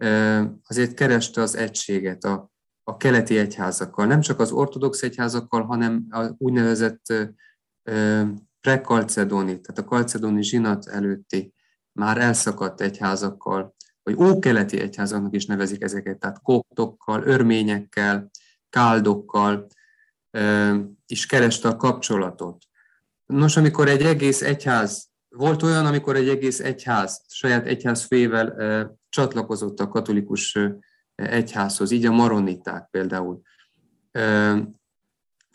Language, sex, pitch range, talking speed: Hungarian, male, 100-125 Hz, 105 wpm